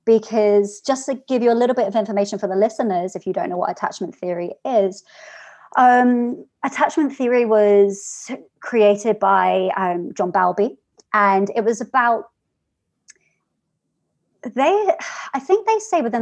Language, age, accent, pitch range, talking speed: English, 30-49, British, 185-230 Hz, 150 wpm